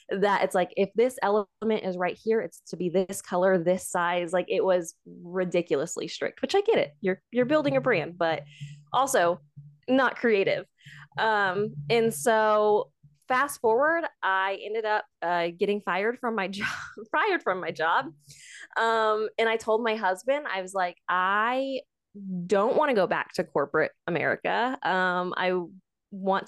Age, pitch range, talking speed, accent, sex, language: 20-39, 180-225 Hz, 165 wpm, American, female, English